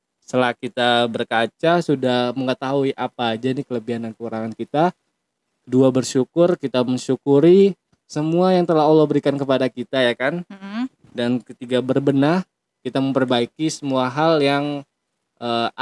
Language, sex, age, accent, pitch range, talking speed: Indonesian, male, 20-39, native, 125-145 Hz, 130 wpm